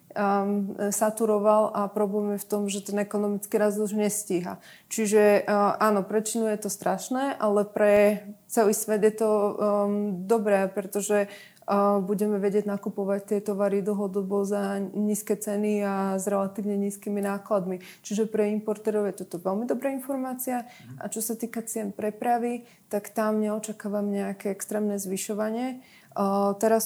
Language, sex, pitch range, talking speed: Slovak, female, 200-220 Hz, 145 wpm